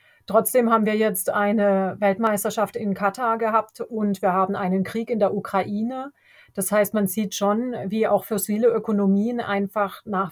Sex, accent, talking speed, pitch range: female, German, 165 wpm, 190-225 Hz